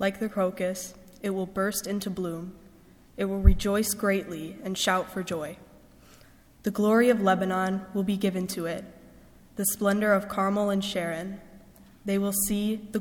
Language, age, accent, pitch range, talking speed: English, 10-29, American, 175-200 Hz, 160 wpm